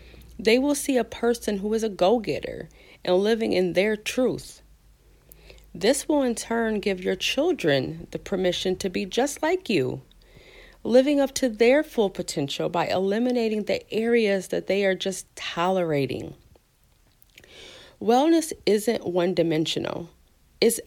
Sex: female